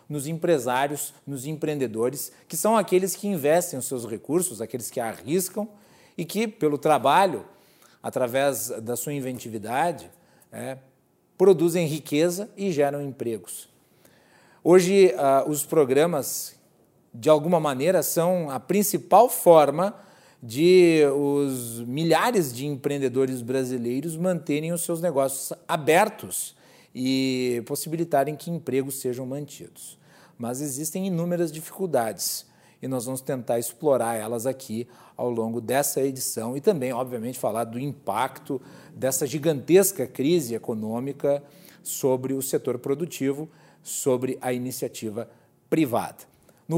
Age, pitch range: 40-59, 130-170 Hz